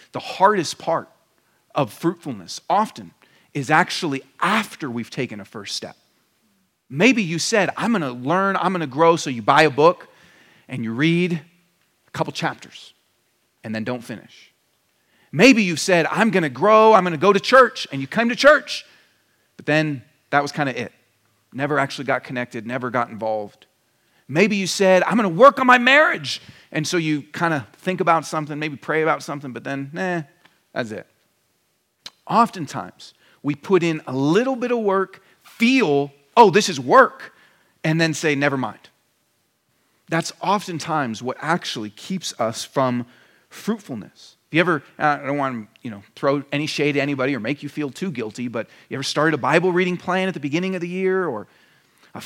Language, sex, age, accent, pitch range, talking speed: English, male, 40-59, American, 140-190 Hz, 180 wpm